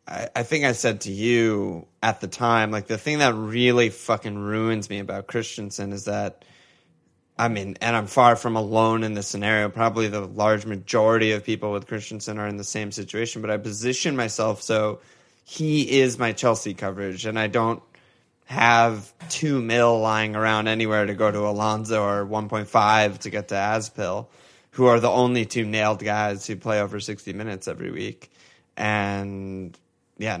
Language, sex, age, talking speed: English, male, 20-39, 175 wpm